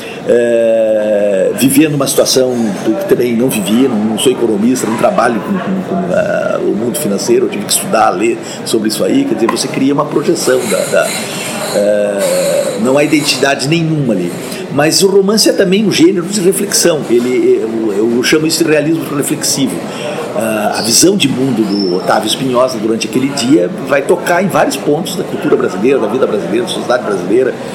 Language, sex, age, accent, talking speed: Portuguese, male, 50-69, Brazilian, 185 wpm